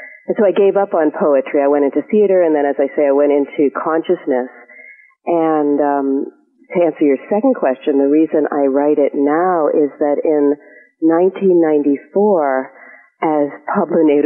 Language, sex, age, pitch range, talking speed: English, female, 40-59, 145-175 Hz, 155 wpm